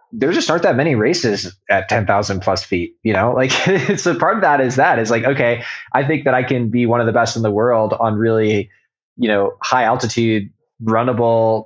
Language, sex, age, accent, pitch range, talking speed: English, male, 20-39, American, 105-120 Hz, 220 wpm